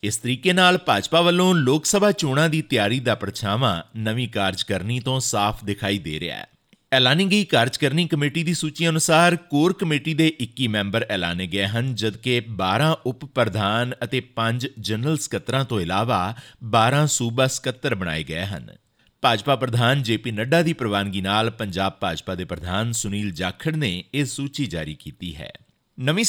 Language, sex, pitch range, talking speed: Punjabi, male, 105-150 Hz, 155 wpm